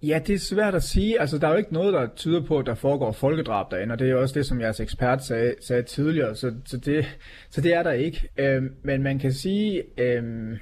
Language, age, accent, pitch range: Danish, 30-49, native, 125-150 Hz